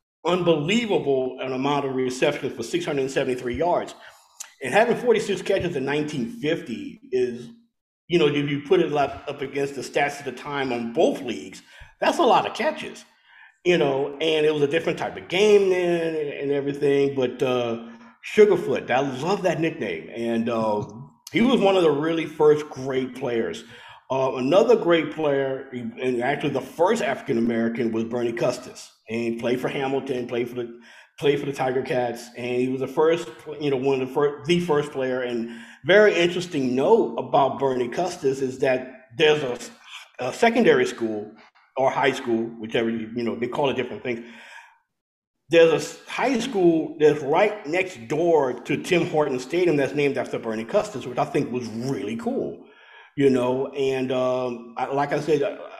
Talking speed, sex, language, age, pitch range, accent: 175 wpm, male, English, 50-69, 125-165 Hz, American